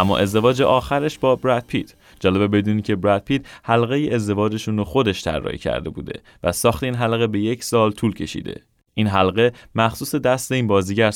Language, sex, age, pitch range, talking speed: Persian, male, 30-49, 90-125 Hz, 175 wpm